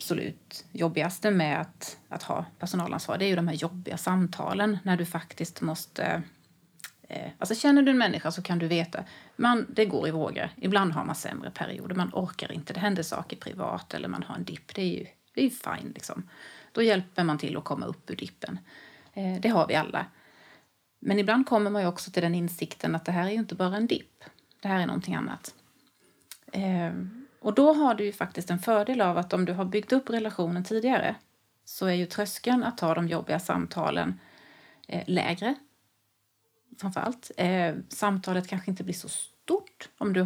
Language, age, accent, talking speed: Swedish, 30-49, native, 195 wpm